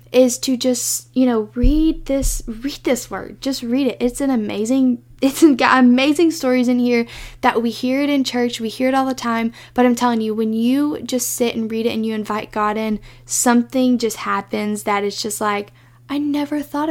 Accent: American